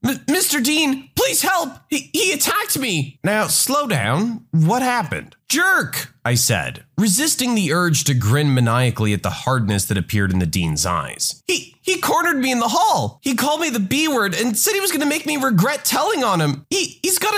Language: English